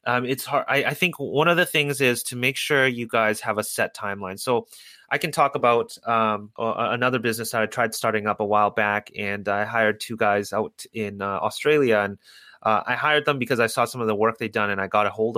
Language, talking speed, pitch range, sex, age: English, 255 wpm, 105-125 Hz, male, 30-49